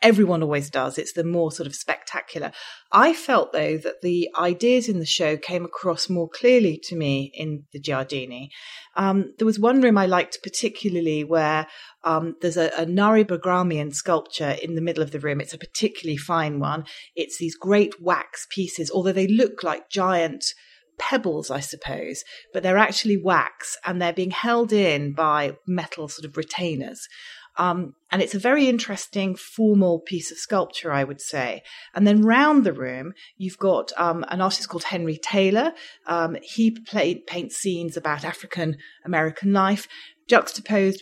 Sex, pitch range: female, 160-215 Hz